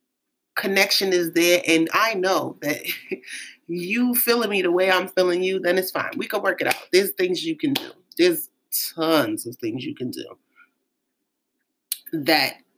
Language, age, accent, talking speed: English, 30-49, American, 170 wpm